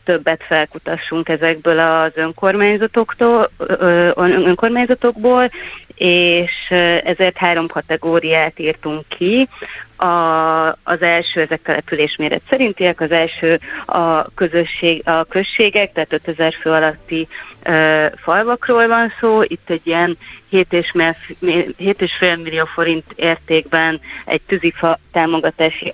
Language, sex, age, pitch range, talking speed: Hungarian, female, 30-49, 160-180 Hz, 95 wpm